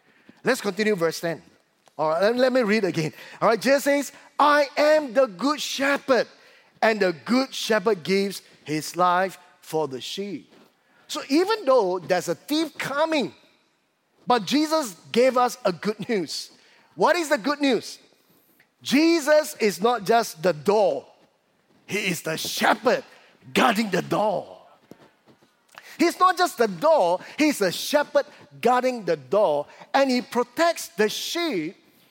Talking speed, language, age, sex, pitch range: 145 wpm, English, 30-49, male, 200-295 Hz